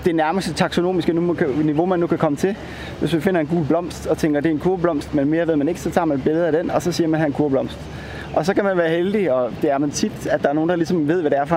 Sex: male